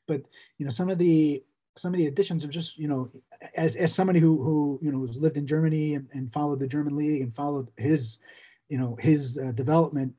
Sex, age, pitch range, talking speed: male, 30-49, 130-165 Hz, 220 wpm